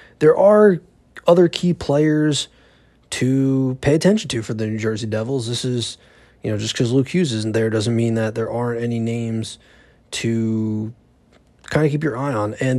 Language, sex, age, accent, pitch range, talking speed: English, male, 20-39, American, 110-135 Hz, 185 wpm